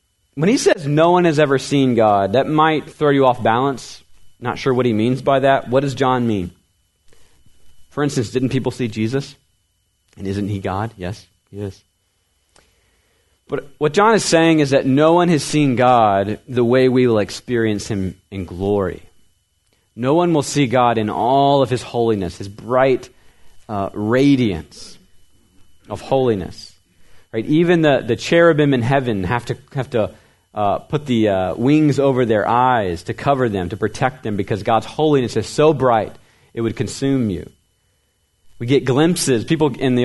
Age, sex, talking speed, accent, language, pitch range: 30-49, male, 175 wpm, American, English, 95-135 Hz